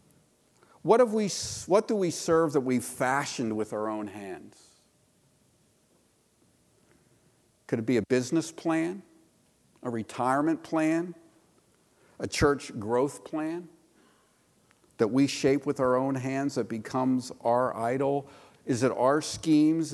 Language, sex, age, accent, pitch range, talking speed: English, male, 50-69, American, 120-160 Hz, 125 wpm